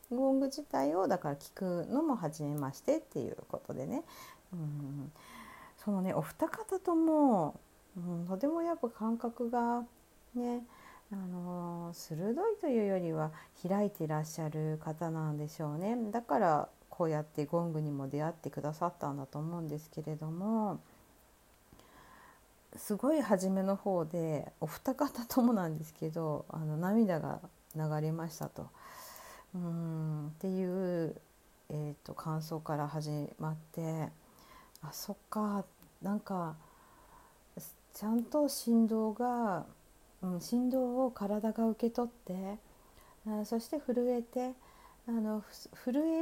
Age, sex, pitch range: 50-69, female, 160-240 Hz